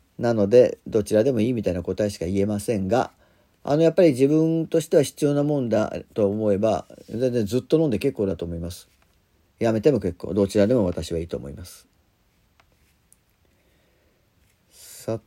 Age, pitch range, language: 40-59, 95-145 Hz, Japanese